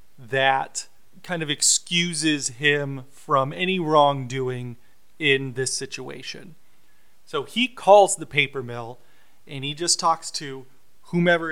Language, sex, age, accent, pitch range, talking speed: English, male, 30-49, American, 135-170 Hz, 120 wpm